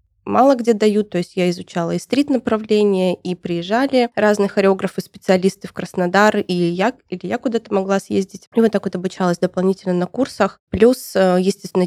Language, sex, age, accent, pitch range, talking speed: Russian, female, 20-39, native, 180-215 Hz, 160 wpm